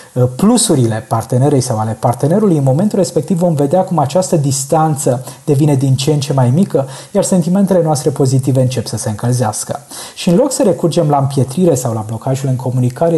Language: Romanian